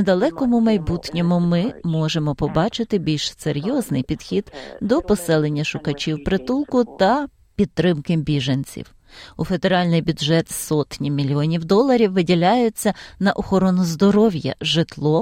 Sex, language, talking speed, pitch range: female, Ukrainian, 105 wpm, 155-215 Hz